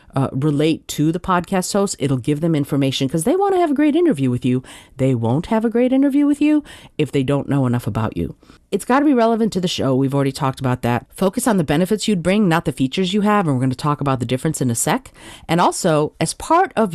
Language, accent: English, American